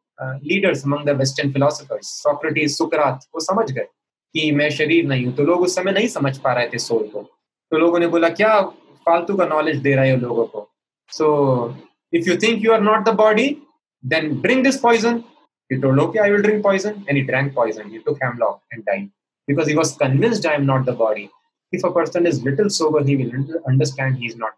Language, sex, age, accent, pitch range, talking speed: English, male, 20-39, Indian, 130-175 Hz, 215 wpm